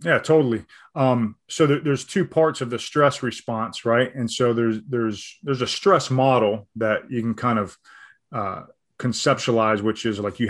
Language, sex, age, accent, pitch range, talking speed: English, male, 20-39, American, 110-130 Hz, 185 wpm